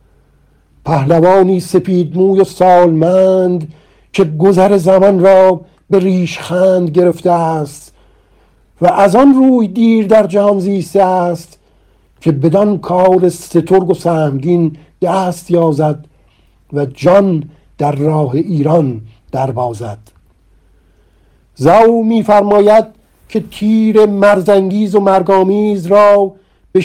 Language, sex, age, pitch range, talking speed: Persian, male, 50-69, 145-190 Hz, 105 wpm